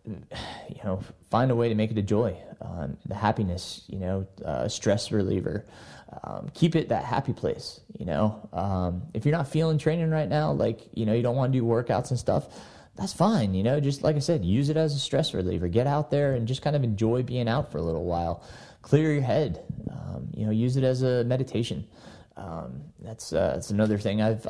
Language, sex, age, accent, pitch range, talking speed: English, male, 20-39, American, 100-125 Hz, 225 wpm